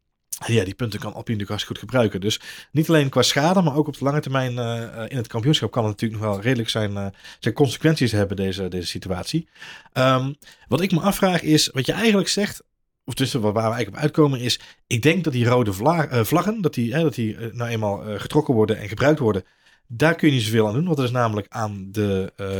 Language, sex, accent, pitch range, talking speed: Dutch, male, Dutch, 100-130 Hz, 240 wpm